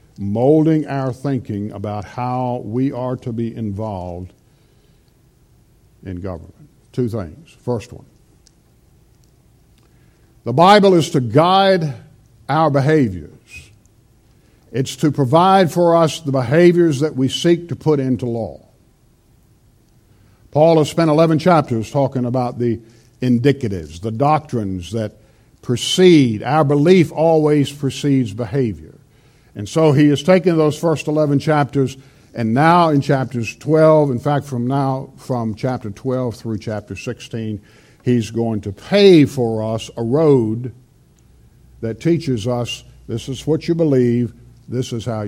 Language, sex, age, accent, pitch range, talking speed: English, male, 50-69, American, 115-150 Hz, 130 wpm